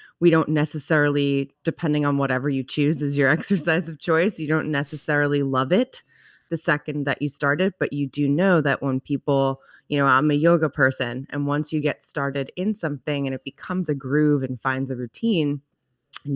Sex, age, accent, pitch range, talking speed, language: female, 20-39, American, 135-160 Hz, 200 wpm, English